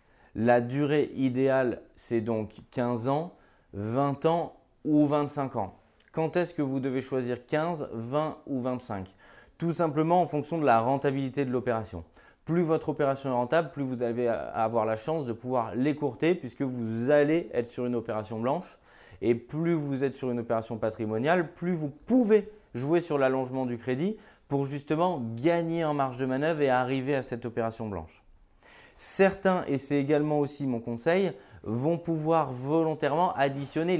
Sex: male